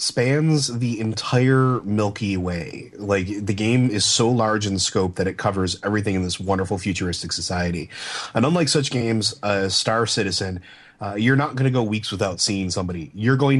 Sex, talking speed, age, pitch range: male, 180 wpm, 30-49, 95-115 Hz